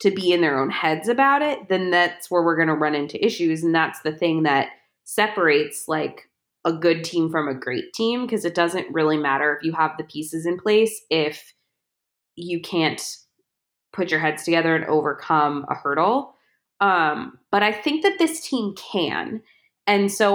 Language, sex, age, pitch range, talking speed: English, female, 20-39, 160-210 Hz, 190 wpm